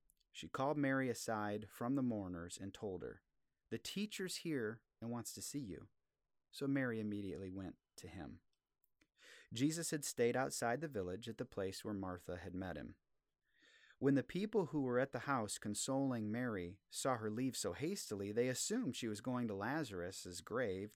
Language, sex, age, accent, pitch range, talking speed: English, male, 30-49, American, 100-135 Hz, 175 wpm